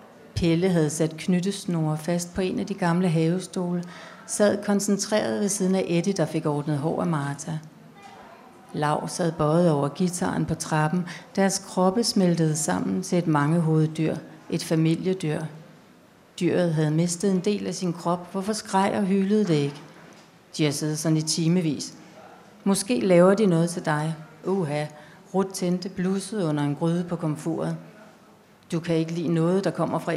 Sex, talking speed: female, 165 wpm